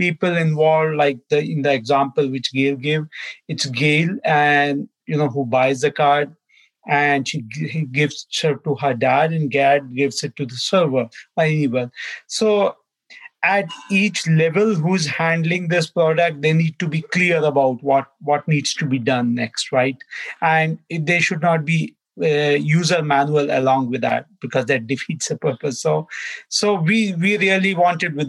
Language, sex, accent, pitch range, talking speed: English, male, Indian, 140-165 Hz, 170 wpm